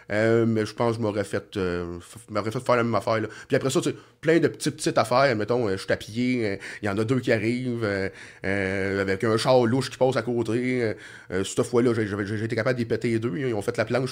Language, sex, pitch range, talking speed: French, male, 110-135 Hz, 285 wpm